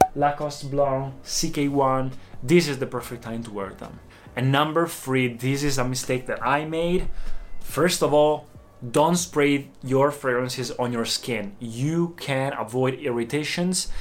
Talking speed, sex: 150 wpm, male